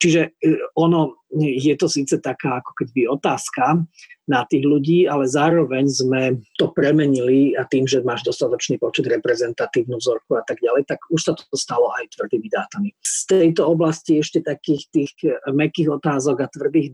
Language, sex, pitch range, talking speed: Slovak, male, 130-170 Hz, 165 wpm